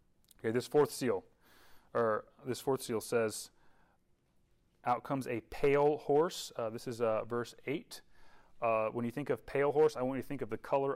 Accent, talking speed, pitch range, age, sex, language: American, 185 wpm, 110-130 Hz, 30-49, male, English